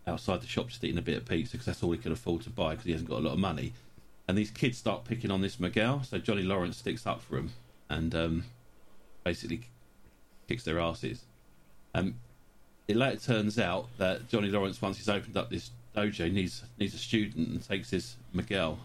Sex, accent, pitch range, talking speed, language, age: male, British, 85-115 Hz, 220 wpm, English, 40-59